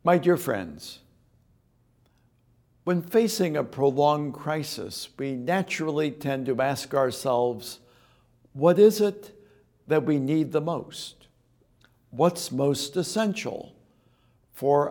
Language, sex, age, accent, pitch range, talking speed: English, male, 60-79, American, 125-175 Hz, 105 wpm